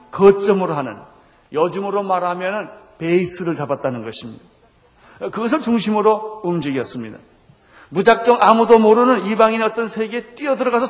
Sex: male